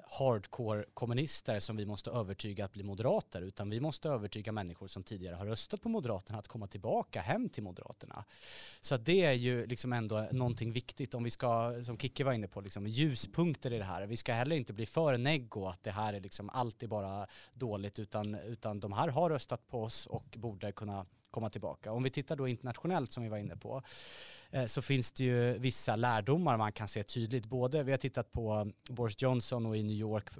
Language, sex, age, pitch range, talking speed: Swedish, male, 30-49, 105-130 Hz, 210 wpm